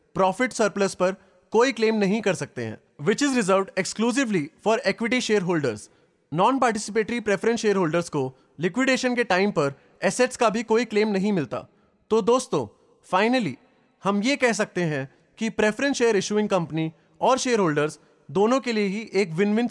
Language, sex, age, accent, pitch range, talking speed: English, male, 30-49, Indian, 165-225 Hz, 160 wpm